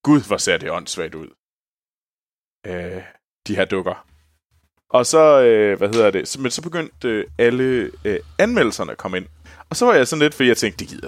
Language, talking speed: Danish, 200 wpm